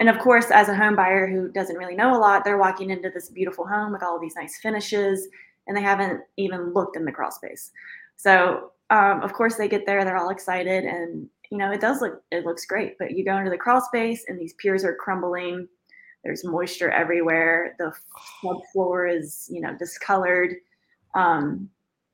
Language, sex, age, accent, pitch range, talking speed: English, female, 20-39, American, 175-205 Hz, 205 wpm